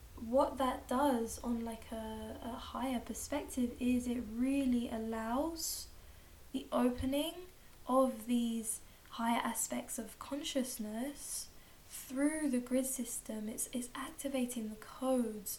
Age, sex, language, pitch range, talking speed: 10-29, female, English, 230-265 Hz, 115 wpm